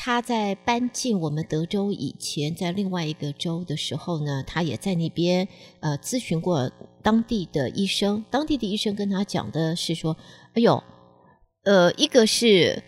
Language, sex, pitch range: Chinese, female, 160-215 Hz